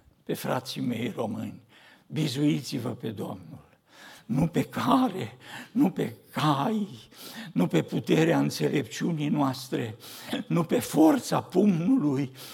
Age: 60-79